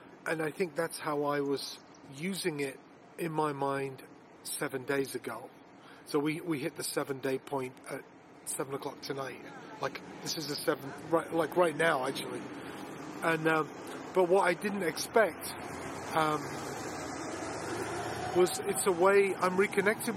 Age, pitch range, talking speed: 30-49, 145-175 Hz, 150 wpm